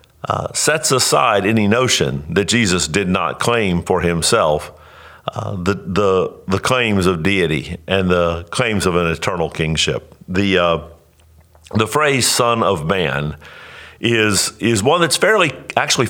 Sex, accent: male, American